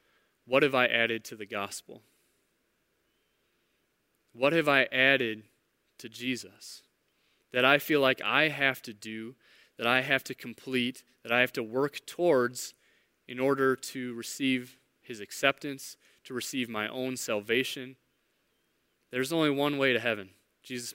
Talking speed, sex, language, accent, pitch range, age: 145 wpm, male, English, American, 115-135 Hz, 20-39